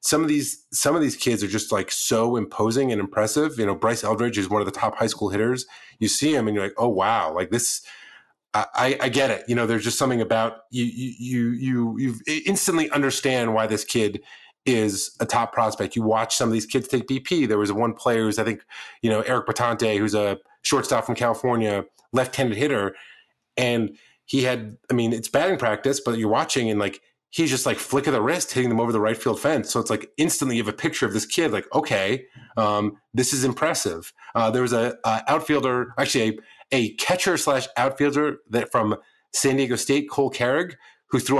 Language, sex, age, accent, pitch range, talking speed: English, male, 30-49, American, 110-135 Hz, 220 wpm